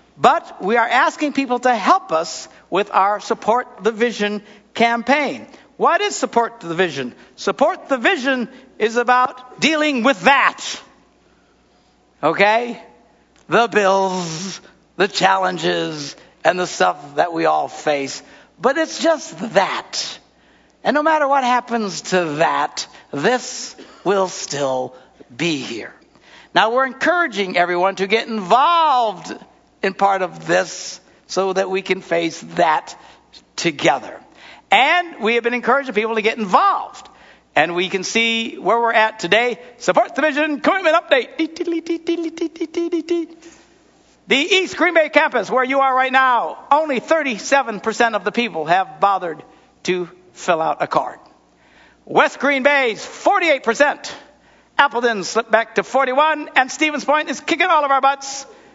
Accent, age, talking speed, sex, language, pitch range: American, 60-79, 140 wpm, male, English, 195-290 Hz